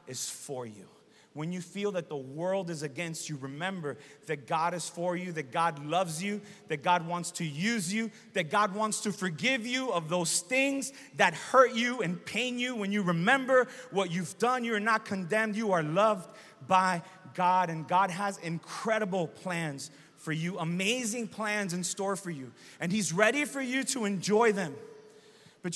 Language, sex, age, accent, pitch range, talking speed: English, male, 30-49, American, 175-240 Hz, 185 wpm